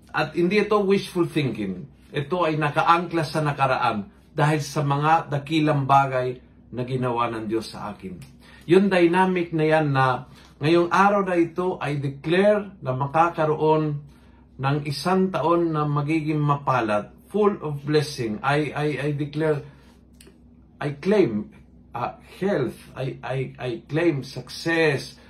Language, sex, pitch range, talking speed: Filipino, male, 130-175 Hz, 135 wpm